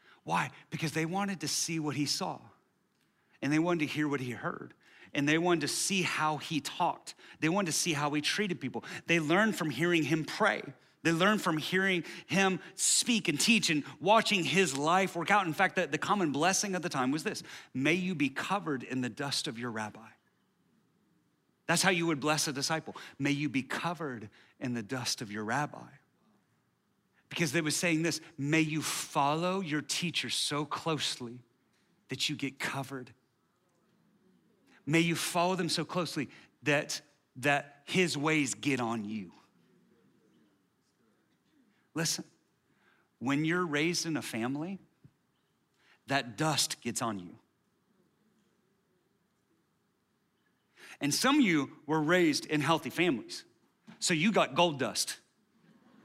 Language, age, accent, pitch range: English, 40-59, American, 140-175 Hz